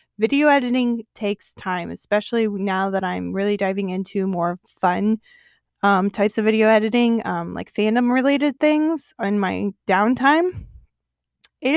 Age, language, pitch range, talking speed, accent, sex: 20-39, English, 190-235 Hz, 140 wpm, American, female